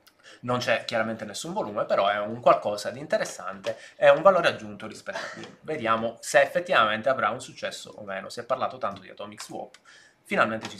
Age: 20-39